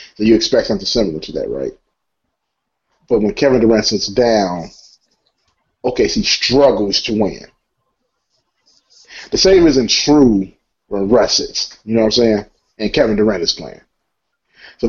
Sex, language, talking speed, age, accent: male, English, 155 wpm, 30-49, American